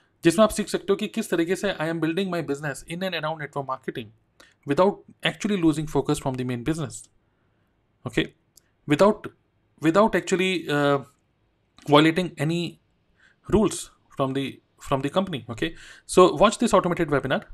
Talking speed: 155 wpm